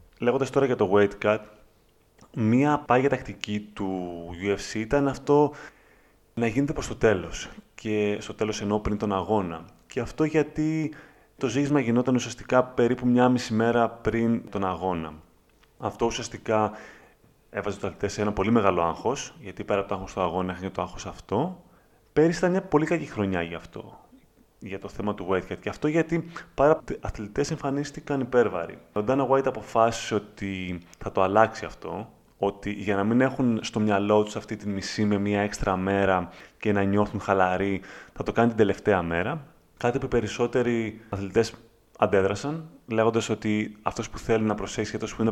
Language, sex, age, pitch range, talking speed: Greek, male, 30-49, 100-125 Hz, 175 wpm